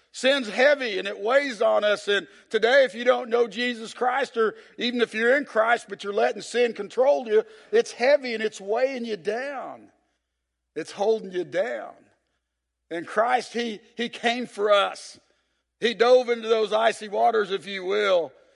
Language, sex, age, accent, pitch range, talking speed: English, male, 50-69, American, 200-255 Hz, 175 wpm